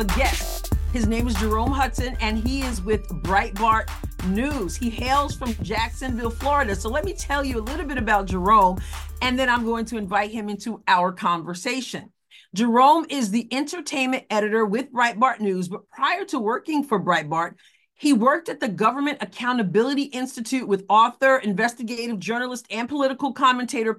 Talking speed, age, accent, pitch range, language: 165 wpm, 40-59, American, 205-270 Hz, English